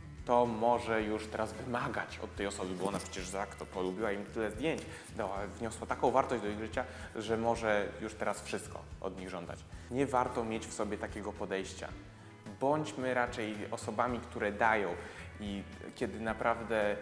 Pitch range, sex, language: 100-120 Hz, male, Polish